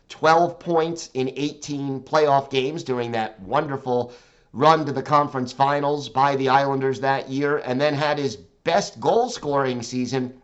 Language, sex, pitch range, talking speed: English, male, 125-150 Hz, 150 wpm